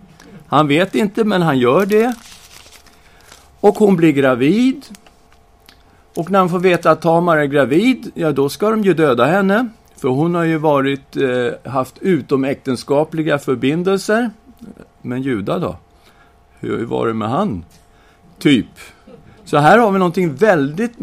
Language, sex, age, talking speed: Swedish, male, 50-69, 145 wpm